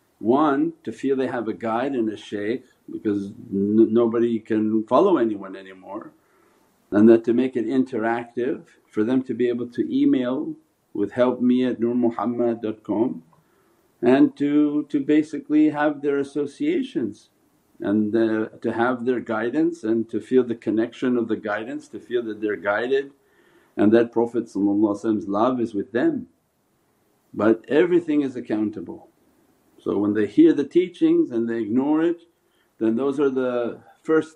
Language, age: English, 50-69